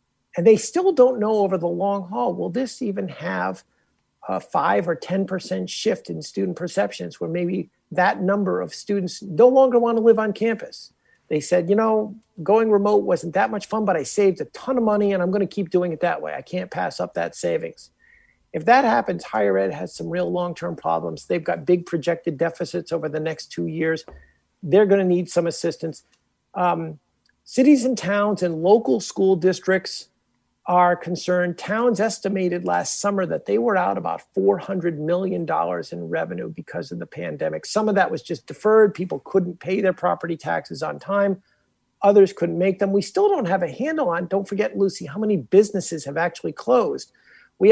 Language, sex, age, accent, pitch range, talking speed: English, male, 50-69, American, 170-210 Hz, 195 wpm